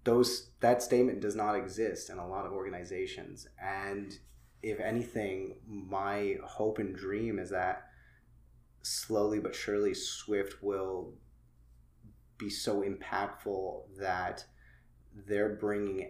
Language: English